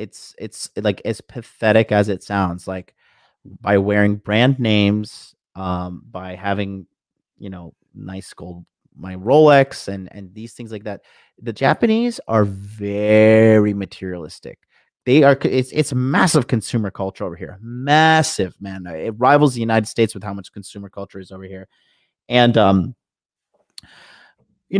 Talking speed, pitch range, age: 145 wpm, 100-120 Hz, 30-49